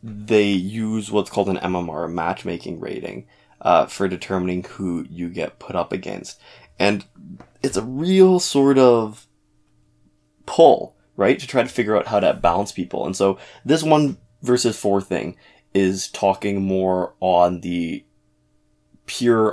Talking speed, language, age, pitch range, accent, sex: 145 wpm, English, 20-39, 90-115 Hz, American, male